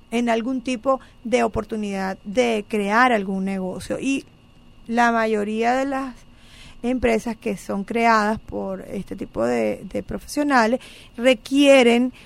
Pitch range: 220-265 Hz